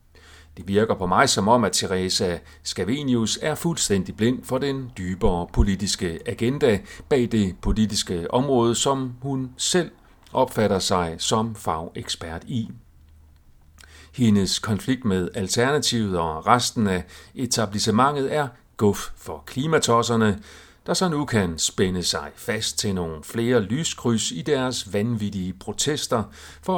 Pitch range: 90-125 Hz